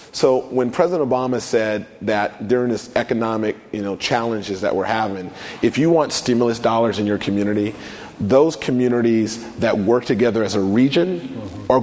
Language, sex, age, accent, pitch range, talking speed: English, male, 30-49, American, 105-125 Hz, 160 wpm